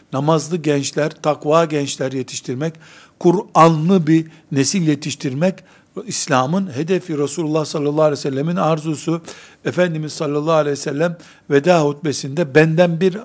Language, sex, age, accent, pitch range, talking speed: Turkish, male, 60-79, native, 140-175 Hz, 120 wpm